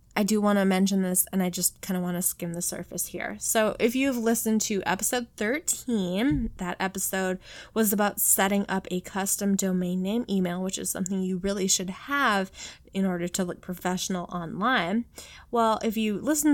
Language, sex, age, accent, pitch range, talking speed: English, female, 20-39, American, 185-220 Hz, 190 wpm